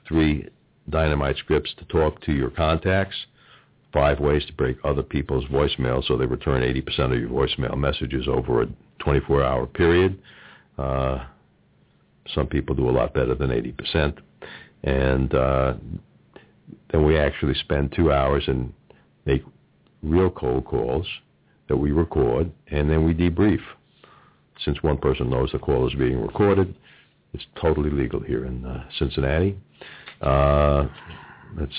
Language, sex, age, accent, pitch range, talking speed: English, male, 60-79, American, 65-80 Hz, 140 wpm